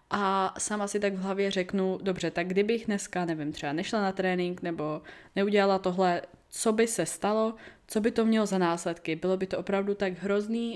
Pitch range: 175-205 Hz